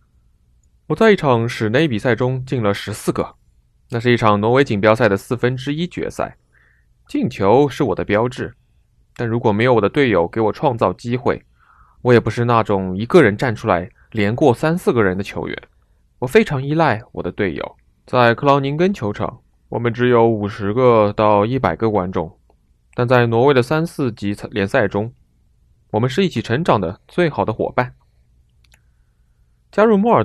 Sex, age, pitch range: male, 20-39, 95-130 Hz